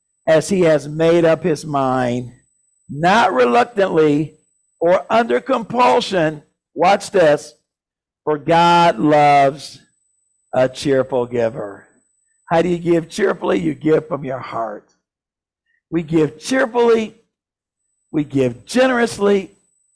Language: English